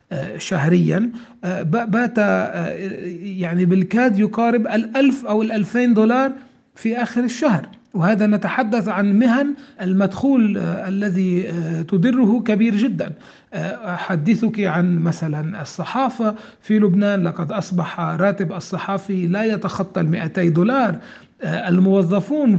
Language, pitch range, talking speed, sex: Arabic, 180-225 Hz, 95 wpm, male